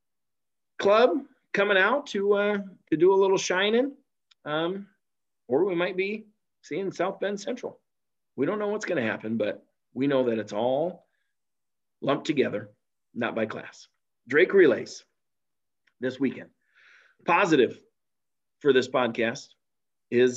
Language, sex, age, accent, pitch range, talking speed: English, male, 40-59, American, 115-150 Hz, 135 wpm